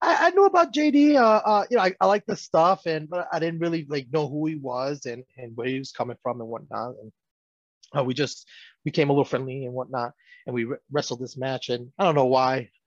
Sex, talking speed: male, 245 wpm